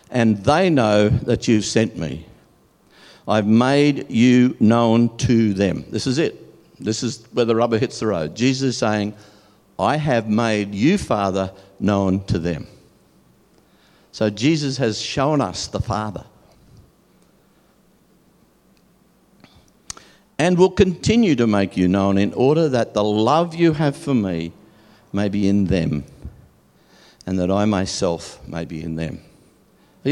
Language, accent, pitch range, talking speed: English, Australian, 100-145 Hz, 140 wpm